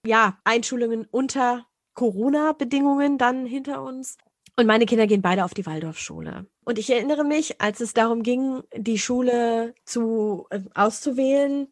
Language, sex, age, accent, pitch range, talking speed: German, female, 20-39, German, 210-245 Hz, 145 wpm